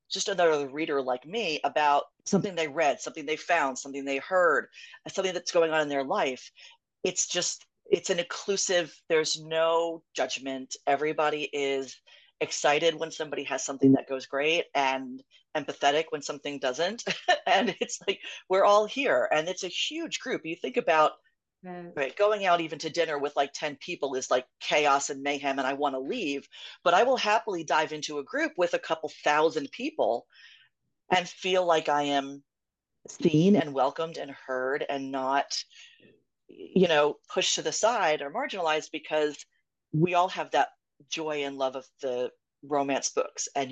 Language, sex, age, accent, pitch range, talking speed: English, female, 40-59, American, 140-180 Hz, 170 wpm